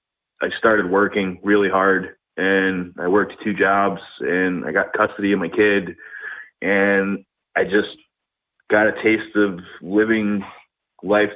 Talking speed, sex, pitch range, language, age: 135 wpm, male, 95-105 Hz, English, 20-39